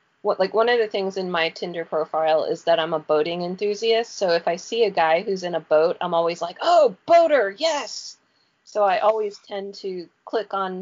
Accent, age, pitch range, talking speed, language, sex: American, 30-49, 175-215 Hz, 215 wpm, English, female